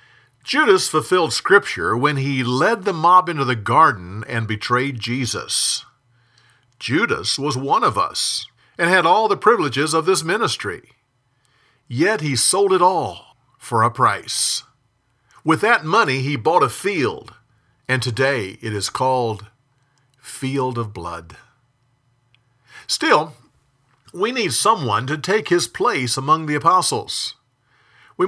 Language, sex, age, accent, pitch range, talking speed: English, male, 50-69, American, 120-150 Hz, 130 wpm